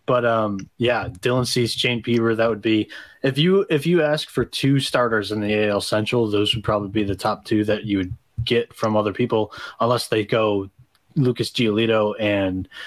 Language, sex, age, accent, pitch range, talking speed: English, male, 20-39, American, 105-125 Hz, 195 wpm